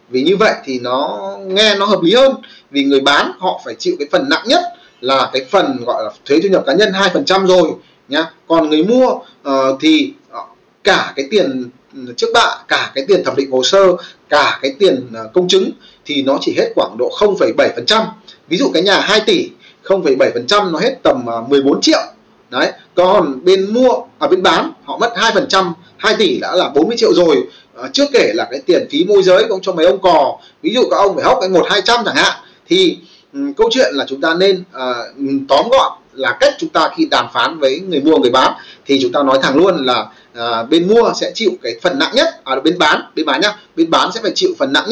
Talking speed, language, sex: 230 wpm, Vietnamese, male